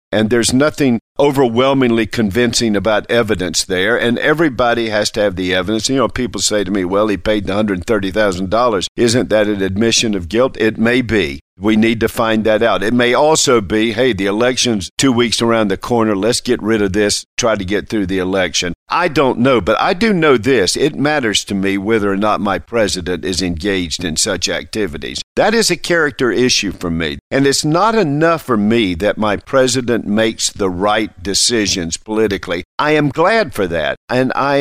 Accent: American